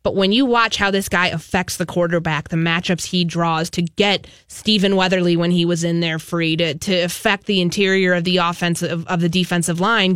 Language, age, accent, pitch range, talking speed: English, 20-39, American, 175-230 Hz, 215 wpm